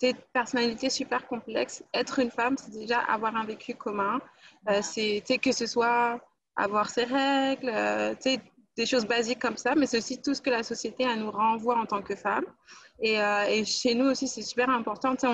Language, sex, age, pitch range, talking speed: French, female, 20-39, 220-260 Hz, 205 wpm